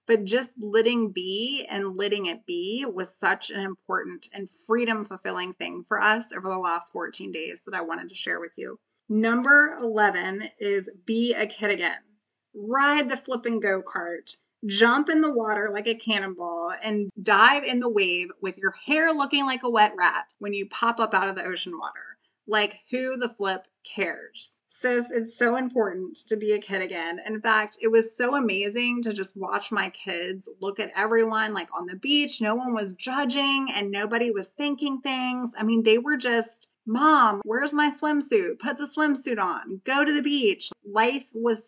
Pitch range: 200-255 Hz